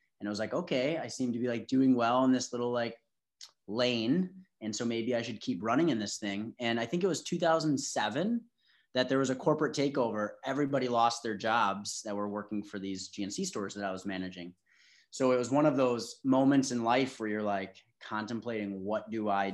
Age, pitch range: 30-49, 110-135 Hz